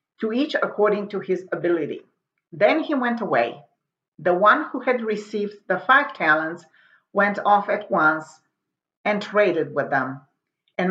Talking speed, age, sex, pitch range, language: 150 wpm, 50-69, female, 175-225 Hz, English